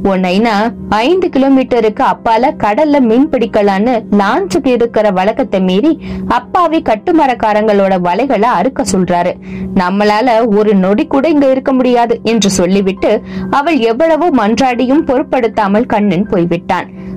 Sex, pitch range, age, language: female, 200-280 Hz, 20-39, Tamil